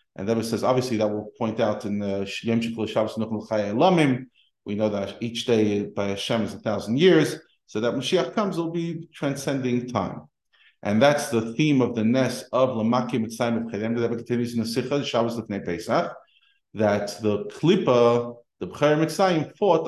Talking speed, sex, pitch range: 170 wpm, male, 110-145 Hz